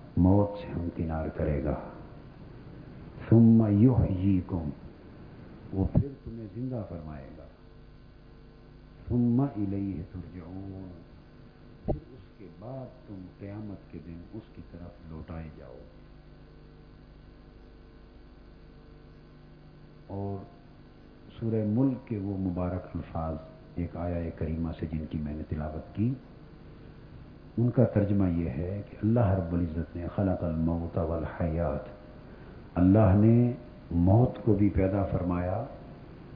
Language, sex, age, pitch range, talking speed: Urdu, male, 50-69, 85-110 Hz, 110 wpm